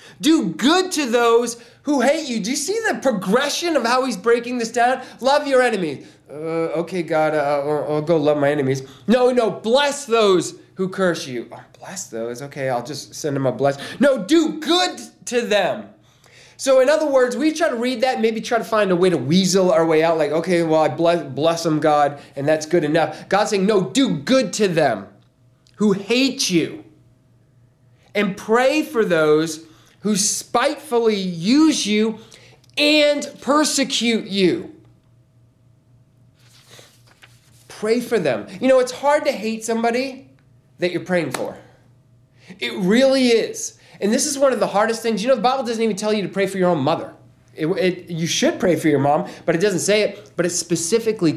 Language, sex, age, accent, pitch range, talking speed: English, male, 20-39, American, 145-240 Hz, 190 wpm